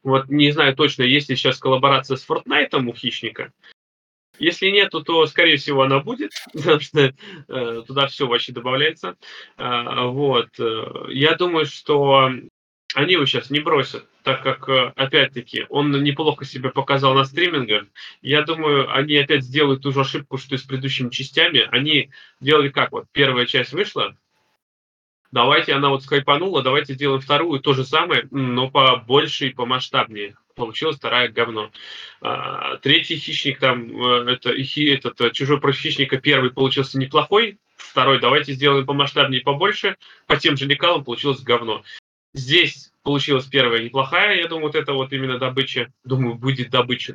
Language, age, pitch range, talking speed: Russian, 20-39, 130-150 Hz, 155 wpm